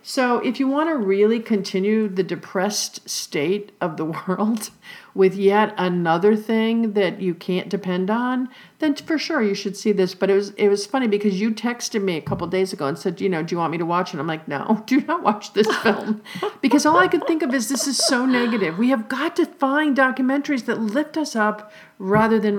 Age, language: 50-69, English